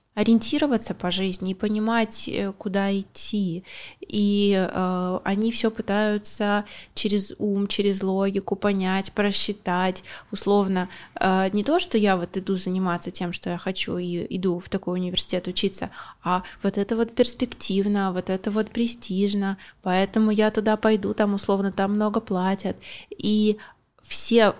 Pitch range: 190-215 Hz